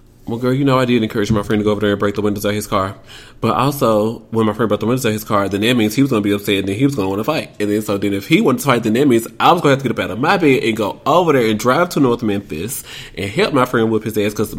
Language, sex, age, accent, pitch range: English, male, 30-49, American, 105-125 Hz